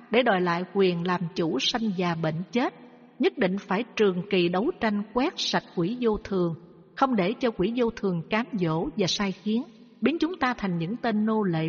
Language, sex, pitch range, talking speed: Vietnamese, female, 180-225 Hz, 210 wpm